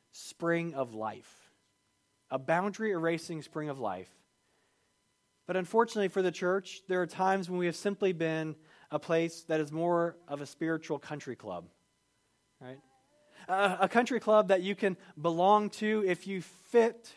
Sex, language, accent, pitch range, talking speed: male, English, American, 150-190 Hz, 150 wpm